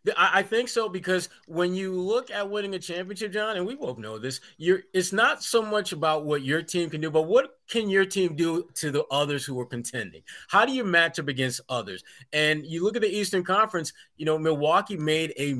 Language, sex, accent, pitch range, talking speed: English, male, American, 140-185 Hz, 225 wpm